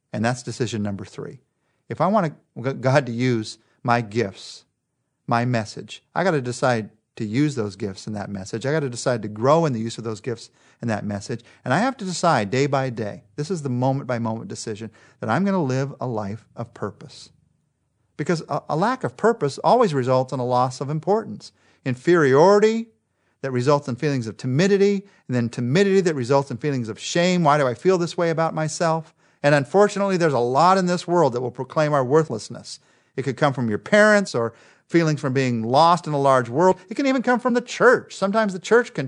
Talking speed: 215 wpm